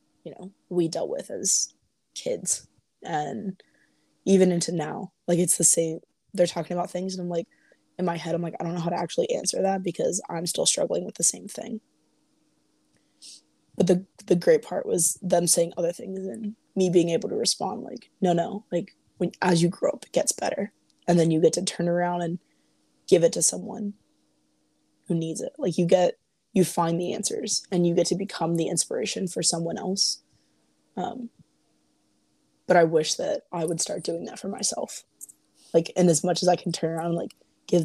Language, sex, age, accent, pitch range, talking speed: English, female, 20-39, American, 170-195 Hz, 200 wpm